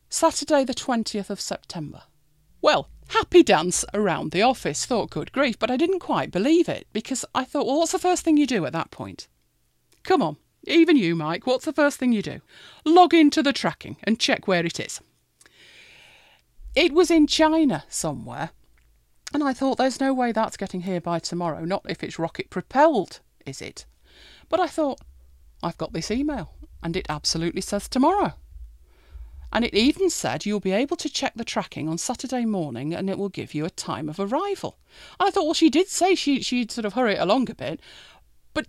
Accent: British